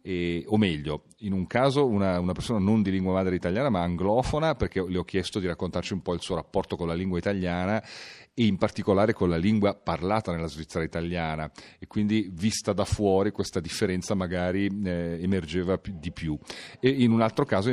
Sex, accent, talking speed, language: male, native, 195 wpm, Italian